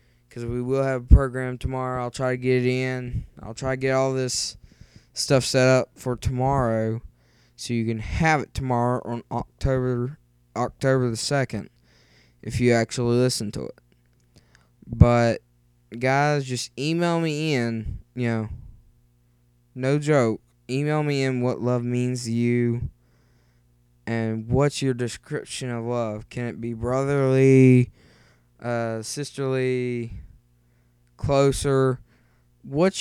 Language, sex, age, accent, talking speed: English, male, 20-39, American, 135 wpm